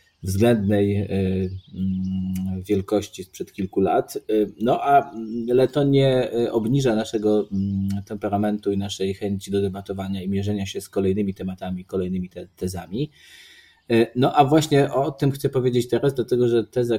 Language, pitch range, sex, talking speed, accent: Polish, 95-115 Hz, male, 125 wpm, native